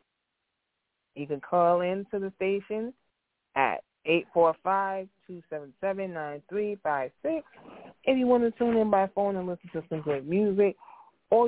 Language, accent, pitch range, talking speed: English, American, 150-190 Hz, 125 wpm